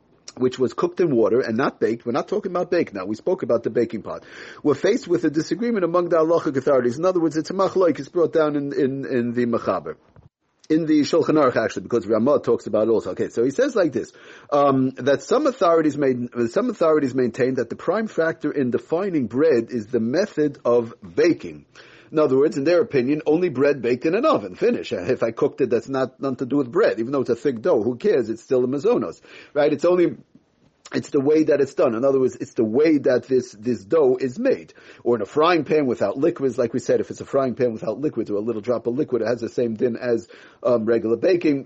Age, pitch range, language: 40-59, 125-175 Hz, English